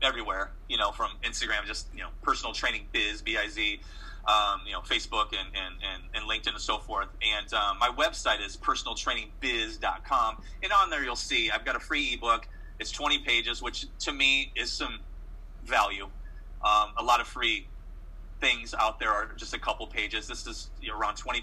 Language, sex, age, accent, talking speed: English, male, 30-49, American, 195 wpm